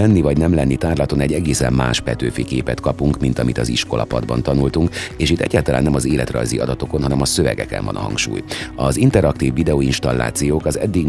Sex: male